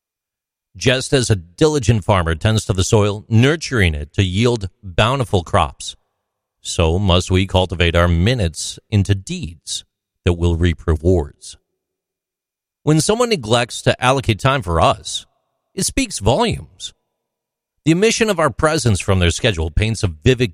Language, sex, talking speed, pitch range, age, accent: English, male, 145 wpm, 90-125 Hz, 50-69, American